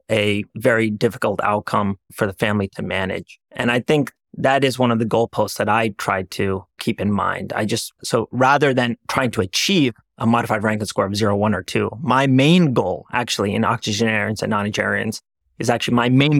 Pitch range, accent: 105-125 Hz, American